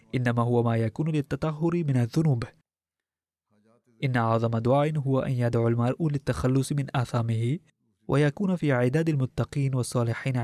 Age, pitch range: 20-39, 115-145 Hz